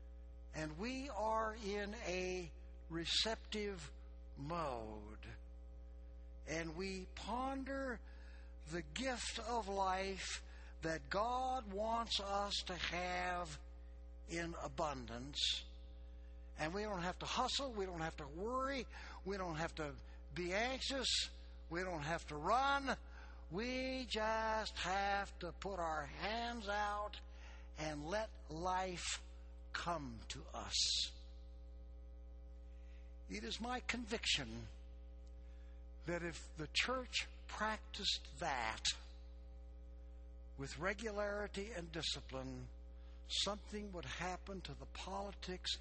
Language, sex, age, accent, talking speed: English, male, 60-79, American, 105 wpm